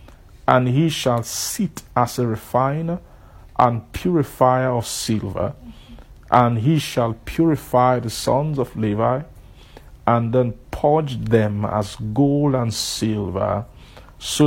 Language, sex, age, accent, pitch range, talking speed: English, male, 50-69, Nigerian, 110-135 Hz, 115 wpm